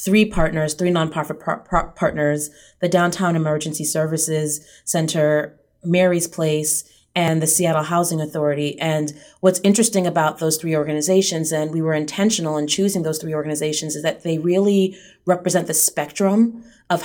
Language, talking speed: English, 145 wpm